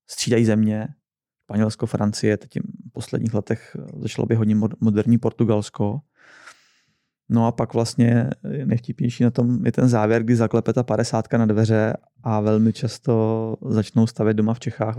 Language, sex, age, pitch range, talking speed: Czech, male, 20-39, 105-115 Hz, 145 wpm